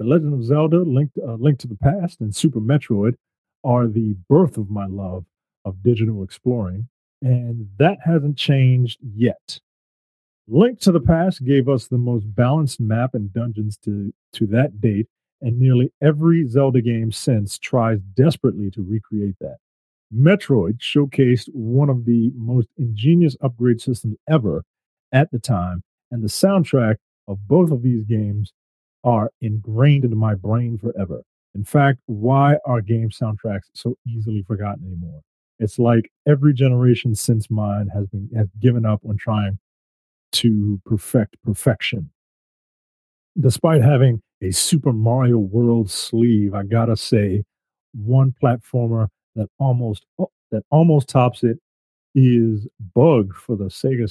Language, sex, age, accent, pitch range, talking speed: English, male, 40-59, American, 105-130 Hz, 145 wpm